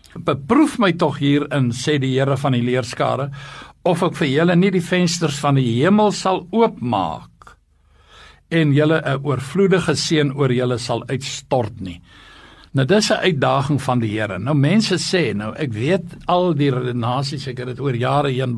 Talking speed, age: 170 wpm, 60-79